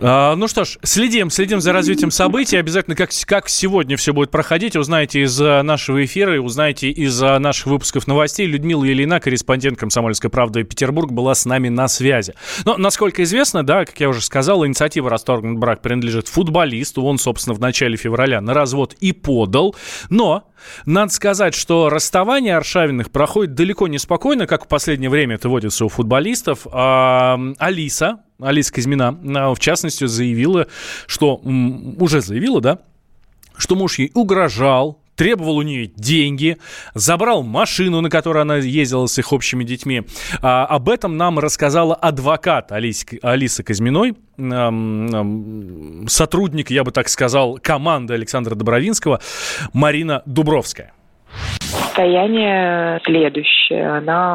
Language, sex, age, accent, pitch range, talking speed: Russian, male, 20-39, native, 130-165 Hz, 140 wpm